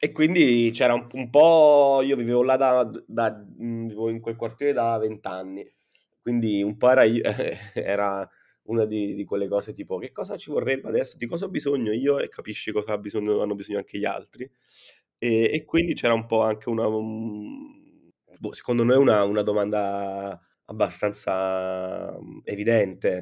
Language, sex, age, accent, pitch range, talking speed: Italian, male, 20-39, native, 100-125 Hz, 175 wpm